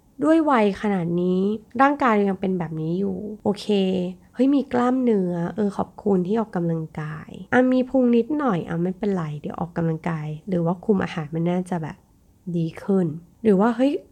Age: 20-39